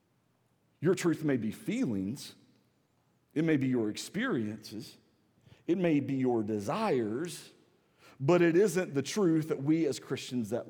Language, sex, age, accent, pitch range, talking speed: English, male, 40-59, American, 170-225 Hz, 140 wpm